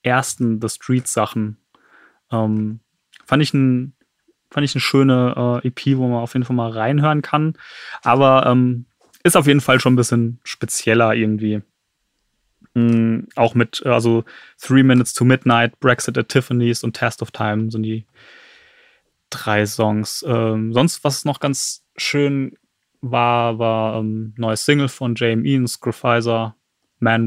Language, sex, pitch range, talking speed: German, male, 115-140 Hz, 145 wpm